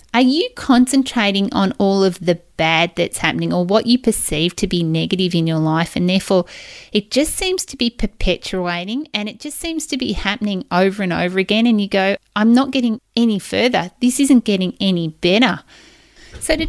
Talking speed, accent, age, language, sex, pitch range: 195 wpm, Australian, 30-49, English, female, 190-245 Hz